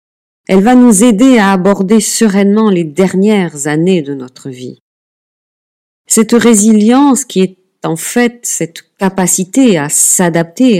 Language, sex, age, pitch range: French, female, 50-69, 155-215 Hz